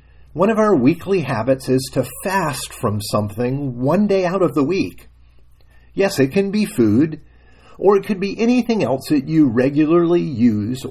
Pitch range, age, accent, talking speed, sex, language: 95-155 Hz, 50-69, American, 170 wpm, male, English